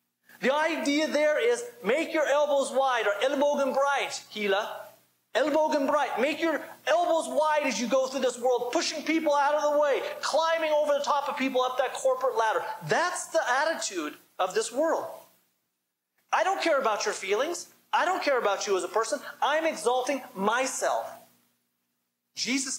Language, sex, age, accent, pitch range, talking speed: English, male, 30-49, American, 190-290 Hz, 170 wpm